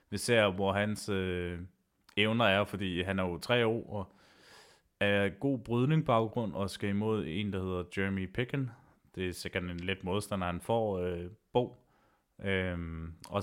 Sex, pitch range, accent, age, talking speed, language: male, 95-110 Hz, native, 20-39, 175 wpm, Danish